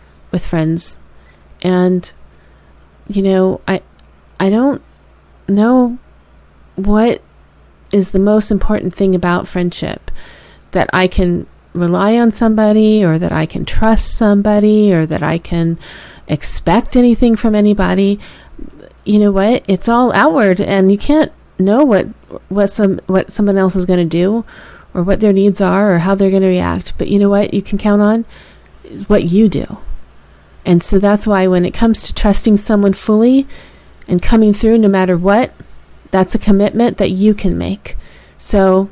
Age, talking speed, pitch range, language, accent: 30-49, 155 wpm, 165-205 Hz, English, American